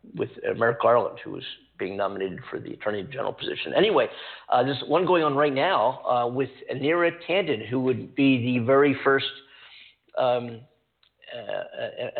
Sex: male